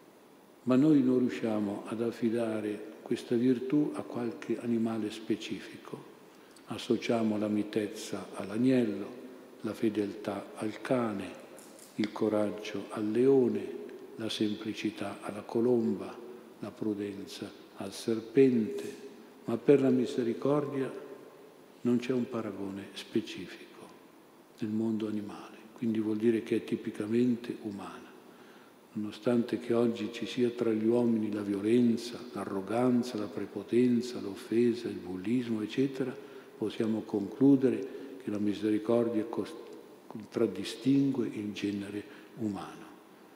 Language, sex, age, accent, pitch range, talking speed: Italian, male, 50-69, native, 105-120 Hz, 105 wpm